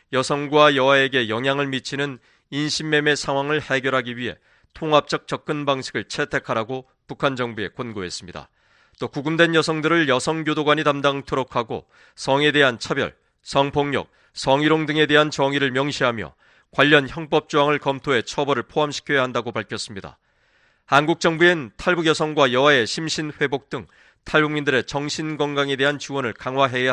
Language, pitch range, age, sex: Korean, 130-150 Hz, 30-49, male